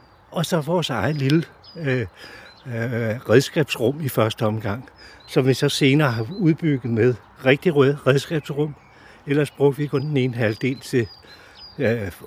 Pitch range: 125-160 Hz